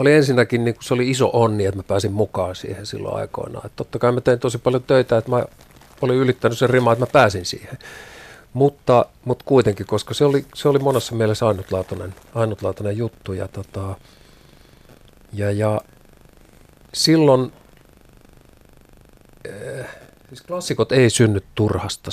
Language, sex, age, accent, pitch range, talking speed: Finnish, male, 50-69, native, 105-125 Hz, 150 wpm